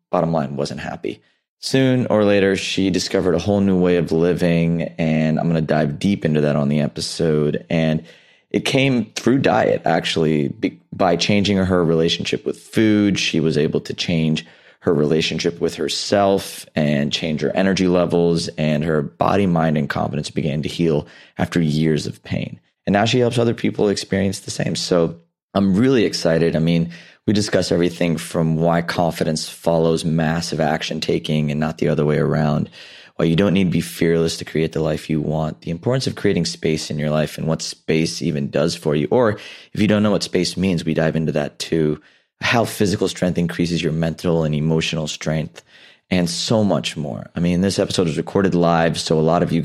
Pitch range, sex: 80-95 Hz, male